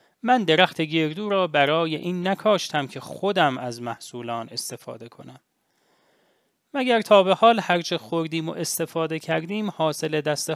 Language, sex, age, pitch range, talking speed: English, male, 30-49, 150-210 Hz, 135 wpm